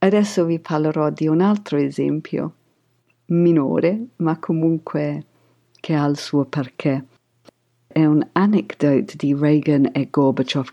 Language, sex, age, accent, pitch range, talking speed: Italian, female, 50-69, native, 130-170 Hz, 125 wpm